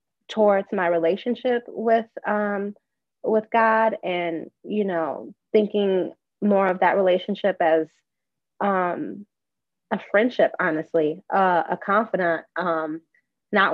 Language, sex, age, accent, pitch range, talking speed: English, female, 20-39, American, 175-215 Hz, 110 wpm